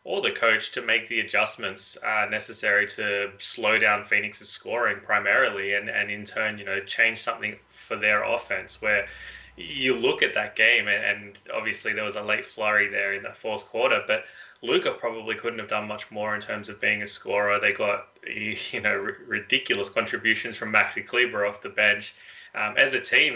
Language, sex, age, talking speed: English, male, 20-39, 190 wpm